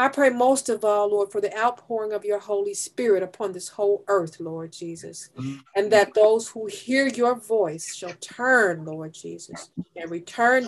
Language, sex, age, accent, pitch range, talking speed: English, female, 40-59, American, 180-235 Hz, 180 wpm